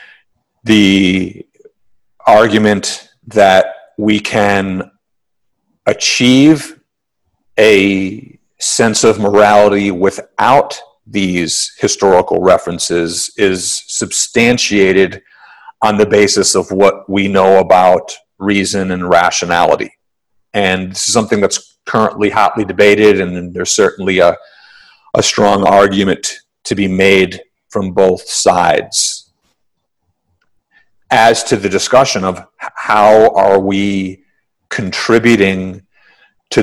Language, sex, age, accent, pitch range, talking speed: English, male, 40-59, American, 95-105 Hz, 95 wpm